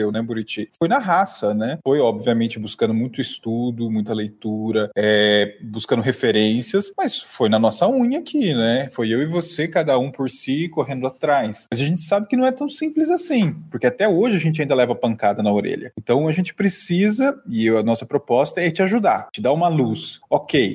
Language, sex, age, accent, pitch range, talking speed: Portuguese, male, 20-39, Brazilian, 120-185 Hz, 200 wpm